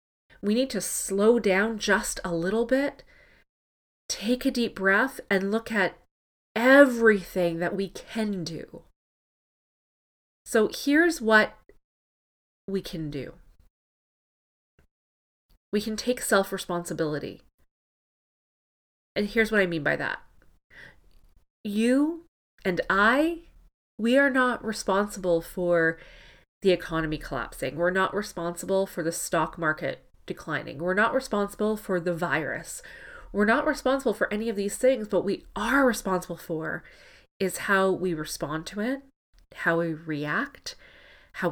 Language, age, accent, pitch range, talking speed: English, 30-49, American, 170-230 Hz, 125 wpm